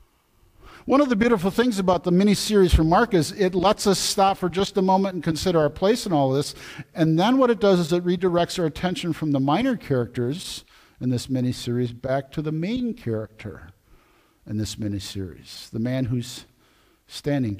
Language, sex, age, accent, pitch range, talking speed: English, male, 50-69, American, 140-195 Hz, 190 wpm